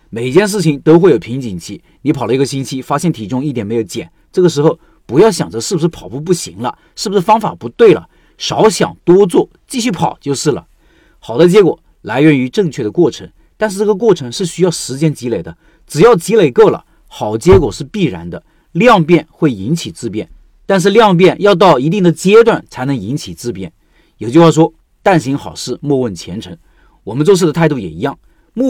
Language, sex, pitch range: Chinese, male, 125-180 Hz